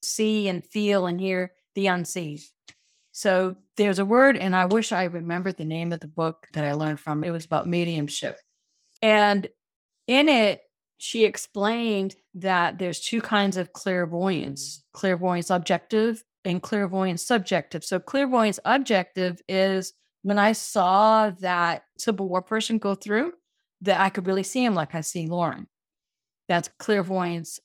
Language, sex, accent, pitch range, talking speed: English, female, American, 165-205 Hz, 150 wpm